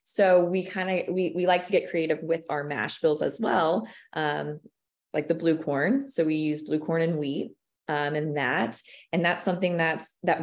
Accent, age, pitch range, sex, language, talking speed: American, 20-39, 150-180 Hz, female, English, 205 wpm